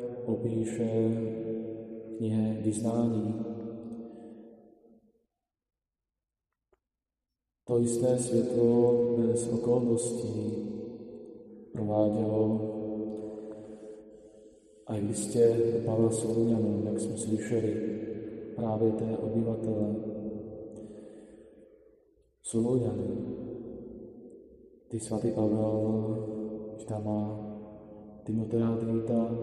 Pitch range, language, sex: 110-120 Hz, Slovak, male